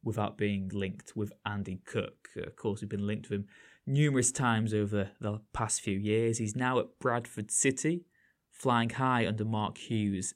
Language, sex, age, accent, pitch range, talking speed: English, male, 20-39, British, 105-135 Hz, 175 wpm